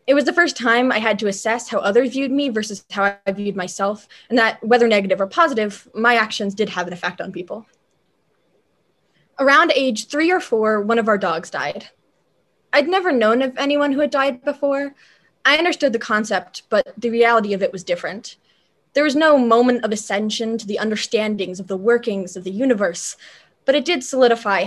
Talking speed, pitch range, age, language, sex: 195 wpm, 205-255 Hz, 20-39, English, female